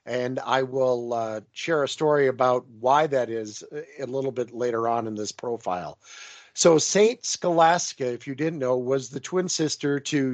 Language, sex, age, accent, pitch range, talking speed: English, male, 50-69, American, 135-165 Hz, 180 wpm